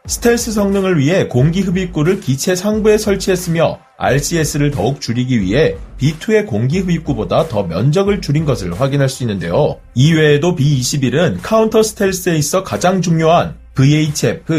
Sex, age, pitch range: male, 30-49, 145-195 Hz